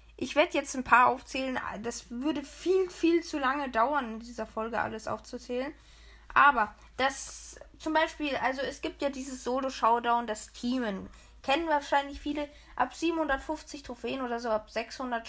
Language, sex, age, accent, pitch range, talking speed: German, female, 20-39, German, 235-310 Hz, 155 wpm